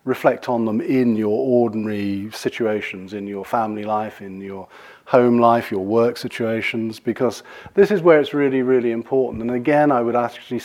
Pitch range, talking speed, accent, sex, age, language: 110-130 Hz, 175 wpm, British, male, 40-59, English